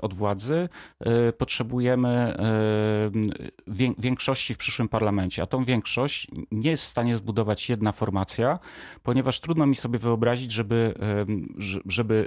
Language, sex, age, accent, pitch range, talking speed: Polish, male, 40-59, native, 105-130 Hz, 115 wpm